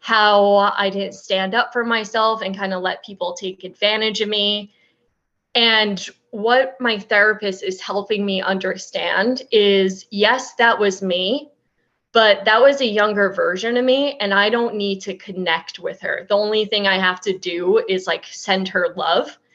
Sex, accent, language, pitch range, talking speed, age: female, American, English, 190-225 Hz, 175 wpm, 20-39